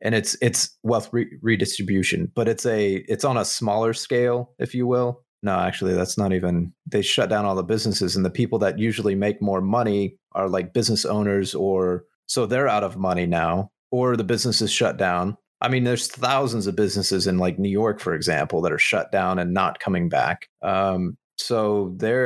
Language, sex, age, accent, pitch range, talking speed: English, male, 30-49, American, 95-120 Hz, 200 wpm